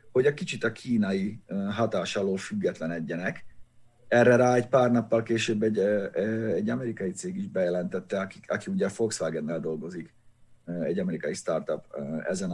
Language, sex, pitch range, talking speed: Hungarian, male, 110-140 Hz, 135 wpm